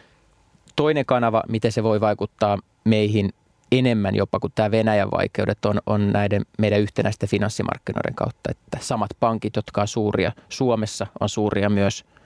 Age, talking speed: 20-39, 145 wpm